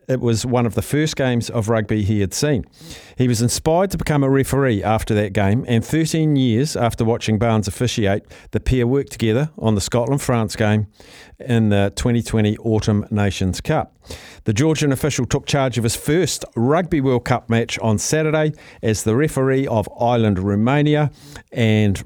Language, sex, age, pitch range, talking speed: English, male, 50-69, 105-130 Hz, 175 wpm